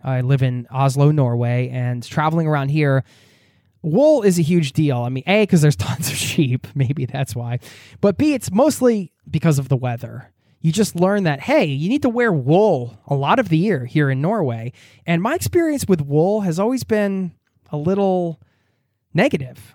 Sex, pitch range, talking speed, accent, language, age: male, 130-180 Hz, 190 wpm, American, English, 20-39